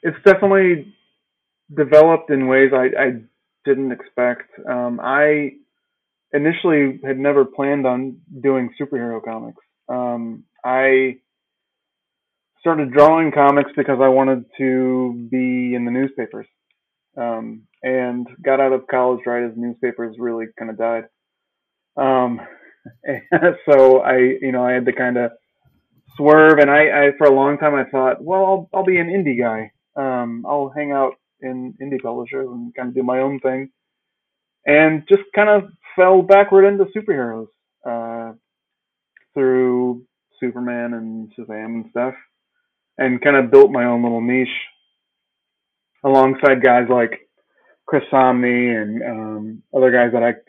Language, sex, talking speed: English, male, 145 wpm